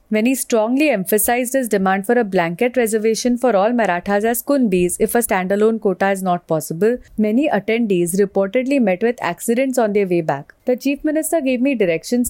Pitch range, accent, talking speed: 195-250 Hz, Indian, 185 wpm